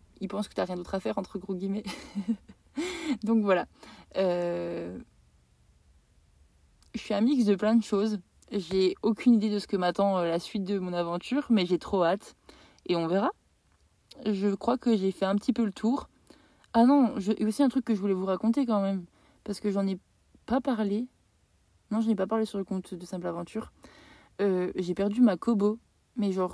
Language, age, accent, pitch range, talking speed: French, 20-39, French, 185-225 Hz, 205 wpm